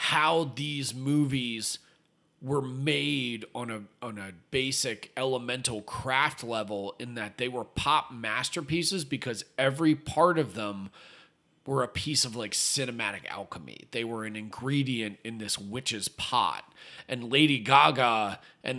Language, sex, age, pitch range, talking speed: English, male, 30-49, 115-145 Hz, 135 wpm